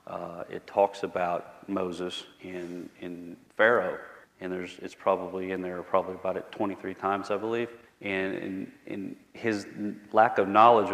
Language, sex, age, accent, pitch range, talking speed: English, male, 40-59, American, 90-105 Hz, 160 wpm